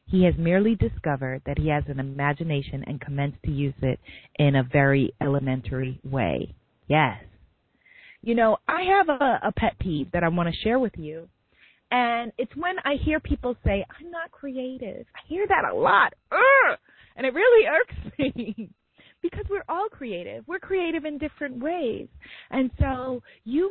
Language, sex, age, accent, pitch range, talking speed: English, female, 30-49, American, 175-290 Hz, 170 wpm